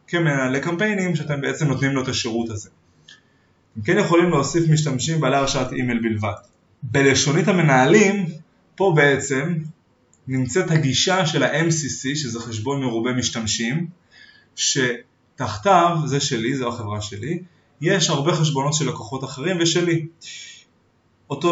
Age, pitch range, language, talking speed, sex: 20-39, 120-160 Hz, Hebrew, 125 wpm, male